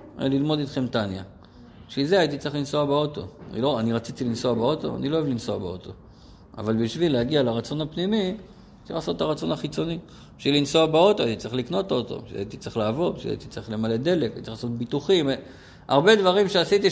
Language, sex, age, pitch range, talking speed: Hebrew, male, 50-69, 115-165 Hz, 185 wpm